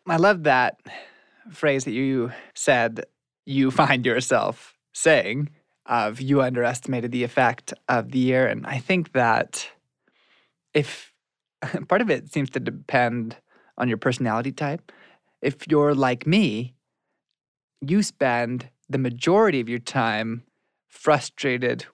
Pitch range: 120-150 Hz